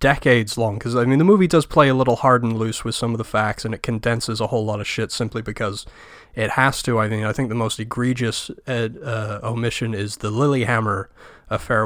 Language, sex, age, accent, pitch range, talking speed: English, male, 30-49, American, 105-120 Hz, 230 wpm